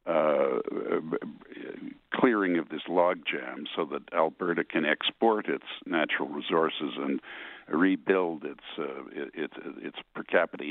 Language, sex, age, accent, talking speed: English, male, 60-79, American, 125 wpm